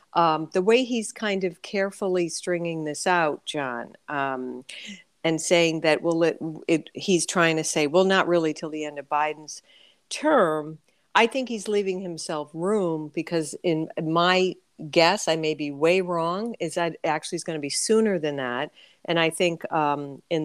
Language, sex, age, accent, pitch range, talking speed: English, female, 50-69, American, 150-185 Hz, 180 wpm